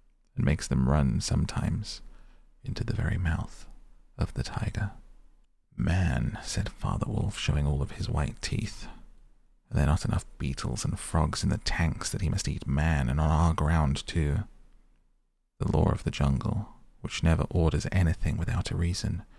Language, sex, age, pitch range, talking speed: English, male, 30-49, 75-105 Hz, 165 wpm